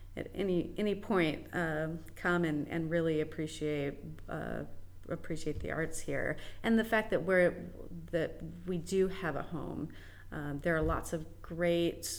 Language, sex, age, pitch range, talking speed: English, female, 30-49, 145-170 Hz, 160 wpm